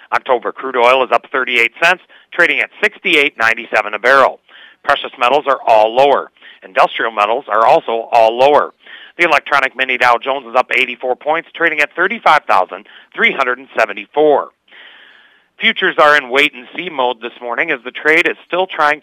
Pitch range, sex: 120-145 Hz, male